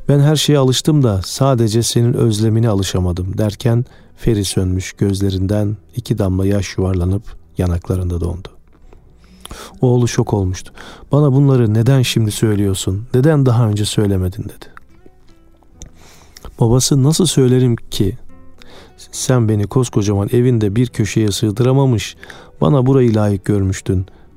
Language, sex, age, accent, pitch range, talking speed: Turkish, male, 40-59, native, 95-125 Hz, 115 wpm